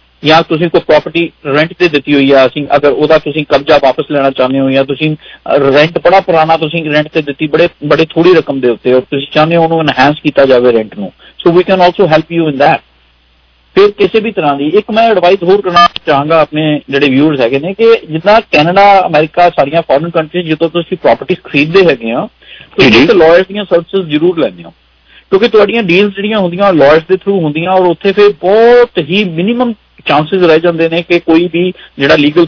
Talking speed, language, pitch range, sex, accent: 85 wpm, English, 145-190 Hz, male, Indian